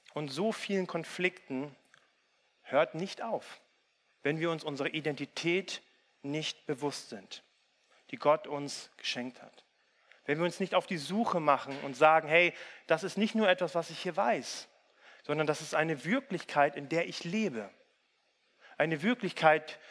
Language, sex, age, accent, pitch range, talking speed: German, male, 40-59, German, 145-185 Hz, 155 wpm